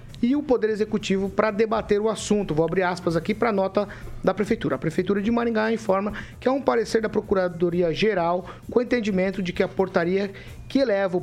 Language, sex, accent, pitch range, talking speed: Portuguese, male, Brazilian, 175-220 Hz, 205 wpm